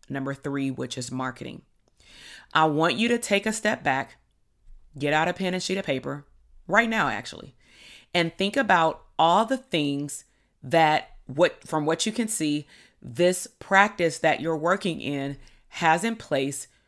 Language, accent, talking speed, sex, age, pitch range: English, American, 165 wpm, female, 30-49, 135-175 Hz